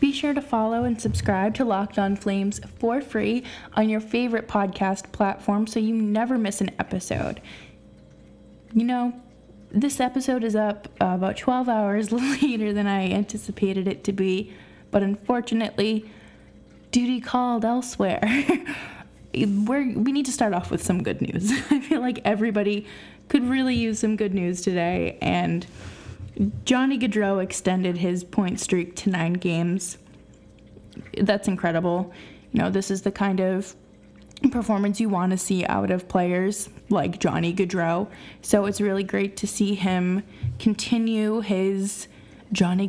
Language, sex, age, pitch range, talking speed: English, female, 10-29, 195-240 Hz, 145 wpm